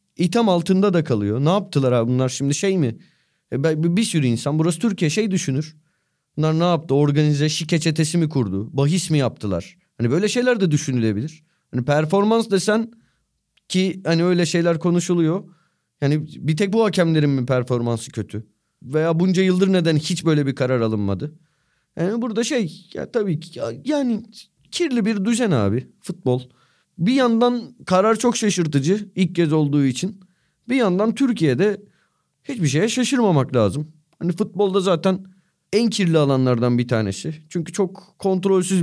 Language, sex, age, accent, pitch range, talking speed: Turkish, male, 30-49, native, 140-185 Hz, 155 wpm